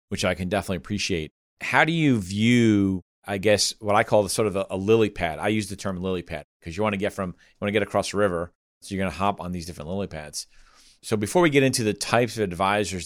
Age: 40-59